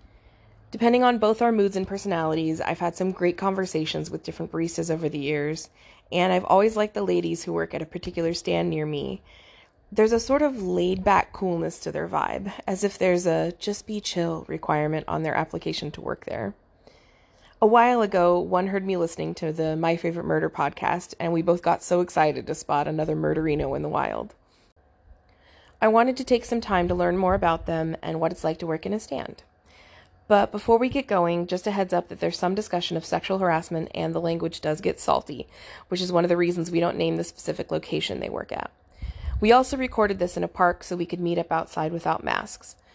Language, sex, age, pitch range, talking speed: English, female, 20-39, 155-190 Hz, 210 wpm